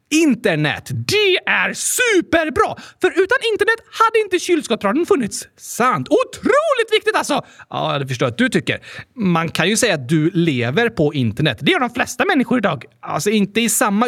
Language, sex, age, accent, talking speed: Swedish, male, 30-49, native, 170 wpm